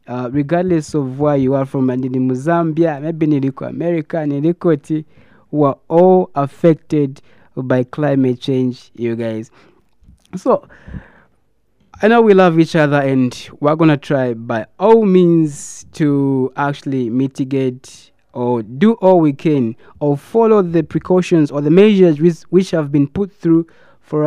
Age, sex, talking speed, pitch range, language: 20-39, male, 145 wpm, 140-175 Hz, English